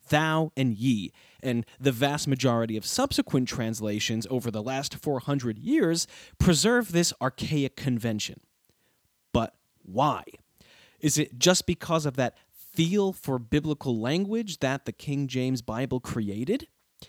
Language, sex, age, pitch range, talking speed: English, male, 30-49, 120-175 Hz, 130 wpm